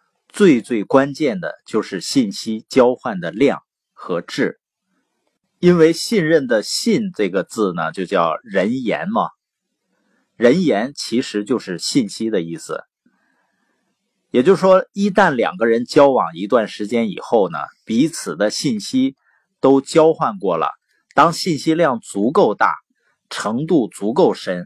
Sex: male